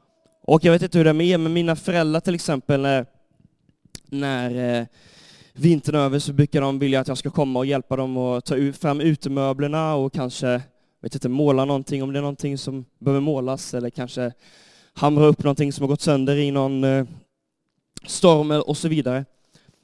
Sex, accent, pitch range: male, native, 130-160 Hz